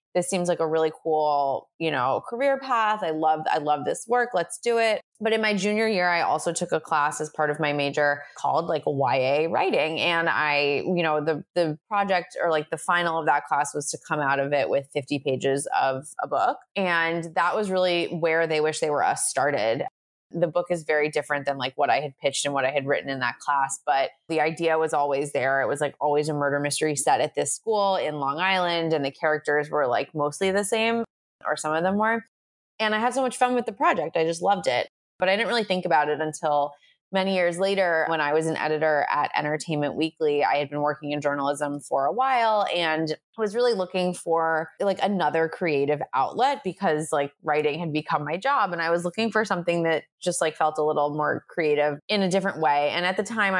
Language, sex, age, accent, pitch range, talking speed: English, female, 20-39, American, 150-190 Hz, 230 wpm